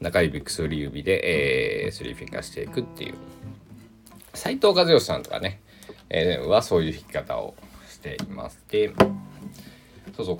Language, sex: Japanese, male